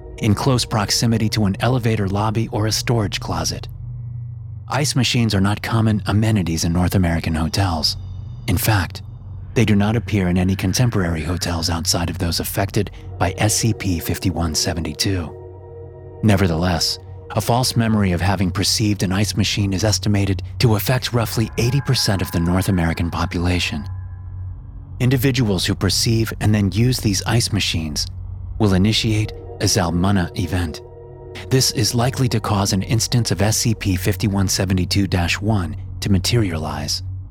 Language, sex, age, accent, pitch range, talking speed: English, male, 30-49, American, 90-115 Hz, 135 wpm